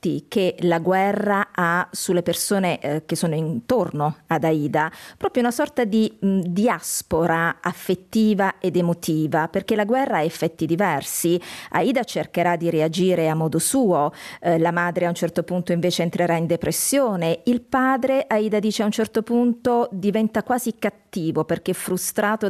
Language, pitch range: Italian, 165-215 Hz